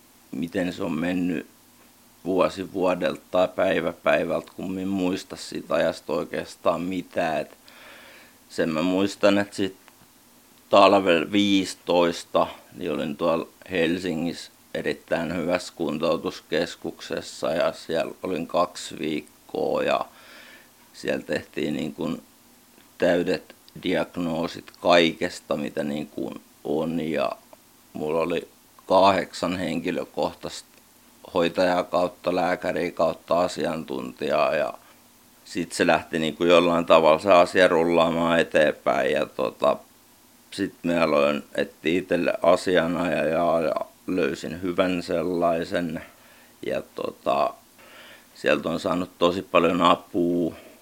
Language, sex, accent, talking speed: Finnish, male, native, 100 wpm